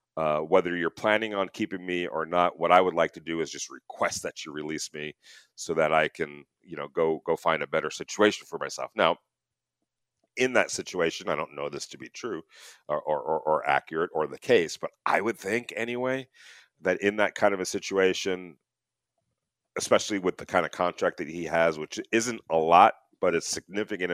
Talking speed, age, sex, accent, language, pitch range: 205 wpm, 40-59, male, American, English, 80-100 Hz